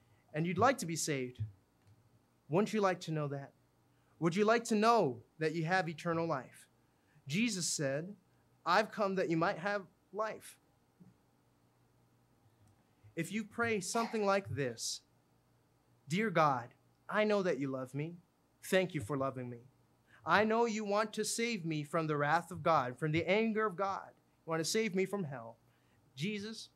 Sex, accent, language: male, American, English